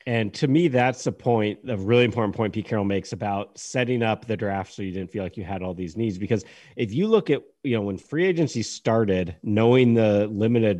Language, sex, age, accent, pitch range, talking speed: English, male, 30-49, American, 95-115 Hz, 235 wpm